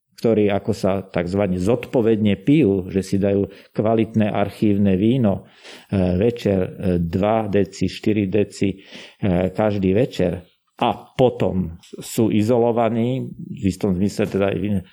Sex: male